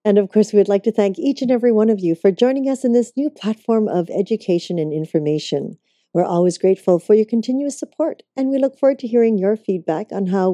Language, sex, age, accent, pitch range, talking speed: English, female, 50-69, American, 170-230 Hz, 235 wpm